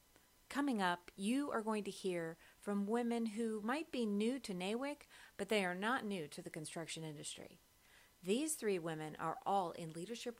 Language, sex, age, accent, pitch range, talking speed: English, female, 40-59, American, 175-235 Hz, 180 wpm